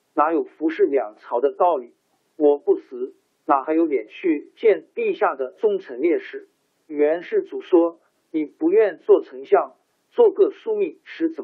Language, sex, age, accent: Chinese, male, 50-69, native